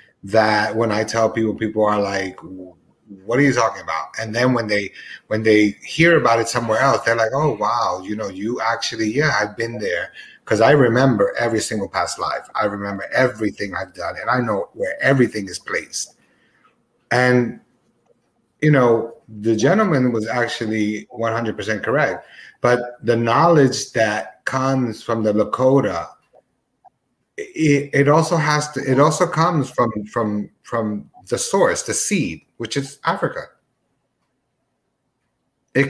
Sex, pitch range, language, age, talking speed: male, 110-140 Hz, English, 30-49, 150 wpm